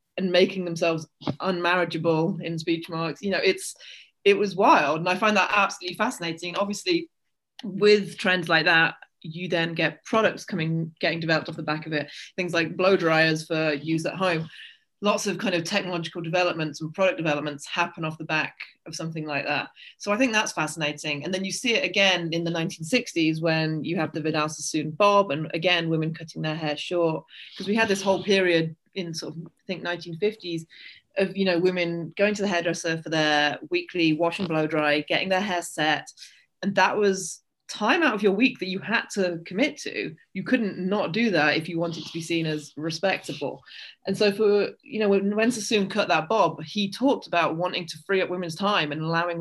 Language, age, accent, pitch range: English, 20-39, British, 160-195 Hz